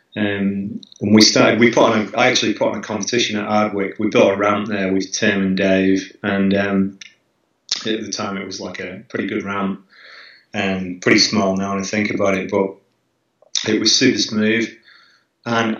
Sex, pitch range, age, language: male, 95-110 Hz, 30-49, English